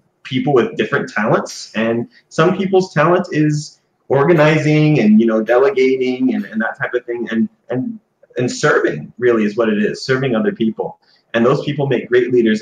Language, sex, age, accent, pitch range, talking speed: English, male, 30-49, American, 120-175 Hz, 180 wpm